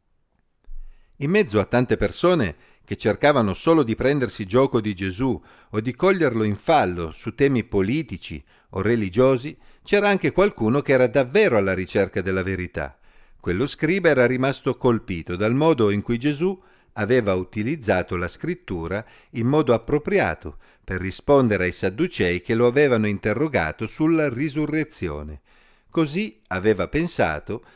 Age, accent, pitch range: 50-69, native, 95-135 Hz